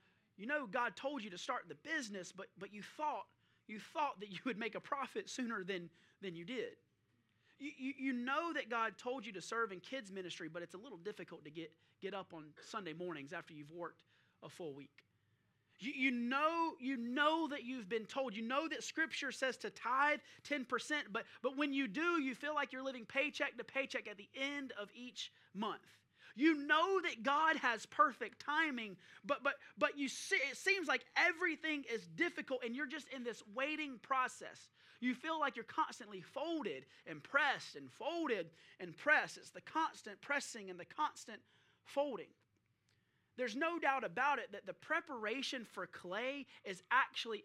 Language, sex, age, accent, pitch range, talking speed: English, male, 30-49, American, 205-290 Hz, 190 wpm